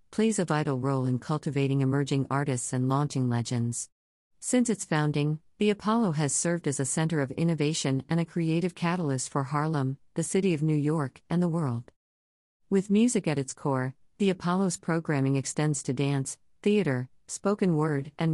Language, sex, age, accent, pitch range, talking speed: English, female, 50-69, American, 130-165 Hz, 170 wpm